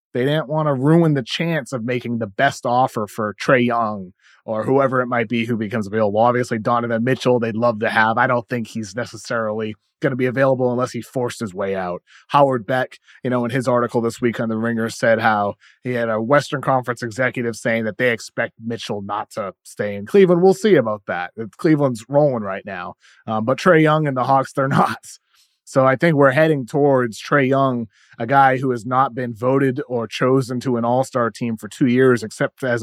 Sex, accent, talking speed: male, American, 215 wpm